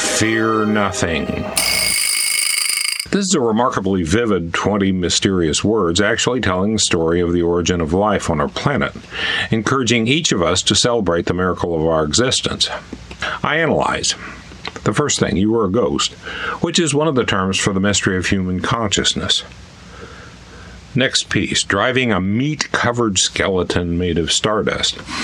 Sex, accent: male, American